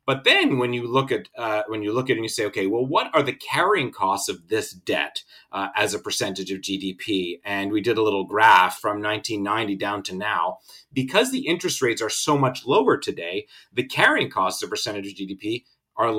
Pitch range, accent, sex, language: 105-150 Hz, American, male, English